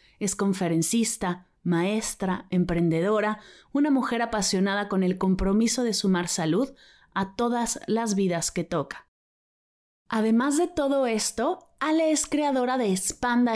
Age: 30-49